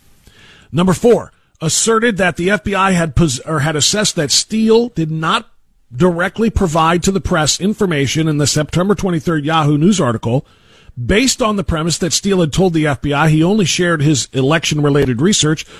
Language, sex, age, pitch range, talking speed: English, male, 40-59, 145-195 Hz, 165 wpm